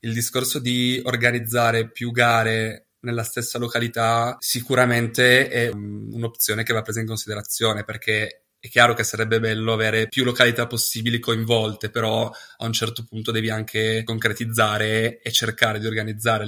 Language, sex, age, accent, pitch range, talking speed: Italian, male, 20-39, native, 110-120 Hz, 145 wpm